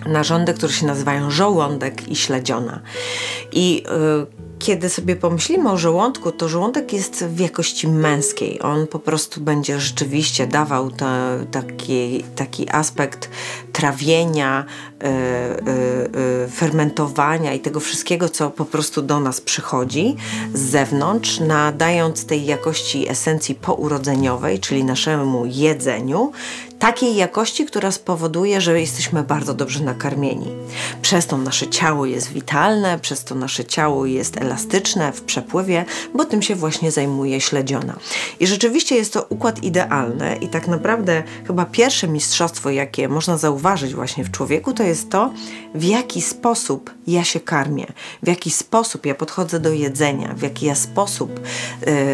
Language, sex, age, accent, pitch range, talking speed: Polish, female, 30-49, native, 135-170 Hz, 135 wpm